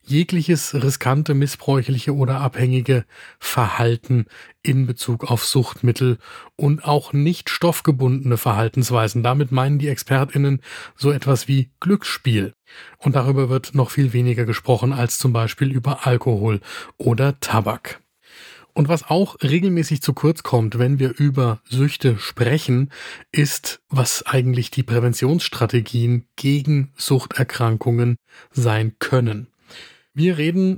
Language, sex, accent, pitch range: German, male, German, 120-140 Hz